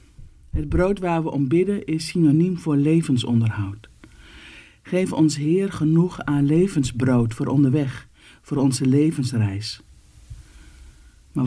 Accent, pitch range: Dutch, 115-160 Hz